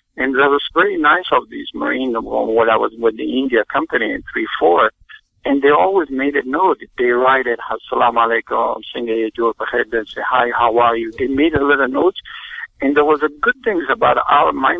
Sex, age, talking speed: male, 60-79, 215 wpm